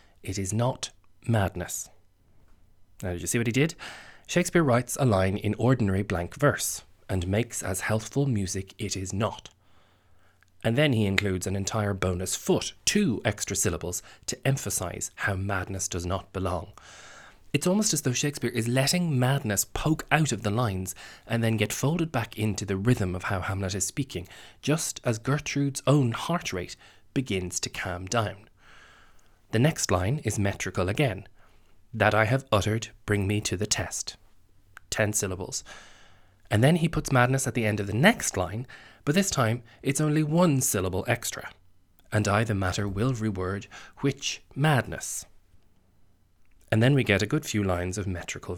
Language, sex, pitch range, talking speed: English, male, 95-125 Hz, 170 wpm